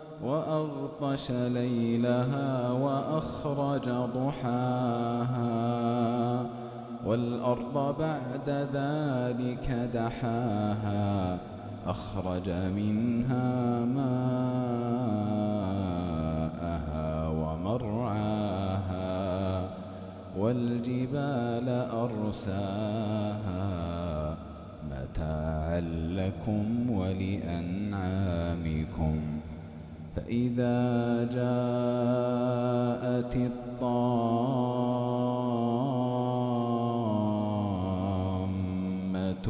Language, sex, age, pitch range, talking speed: Arabic, male, 20-39, 95-125 Hz, 30 wpm